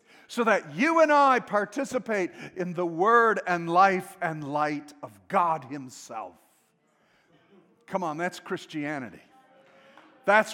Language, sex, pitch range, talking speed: English, male, 175-230 Hz, 120 wpm